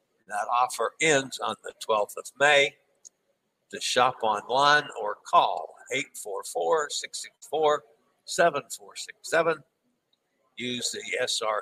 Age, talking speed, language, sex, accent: 60-79, 90 wpm, English, male, American